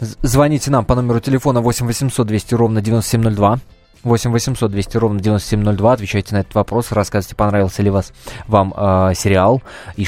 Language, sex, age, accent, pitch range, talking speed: Russian, male, 20-39, native, 105-135 Hz, 160 wpm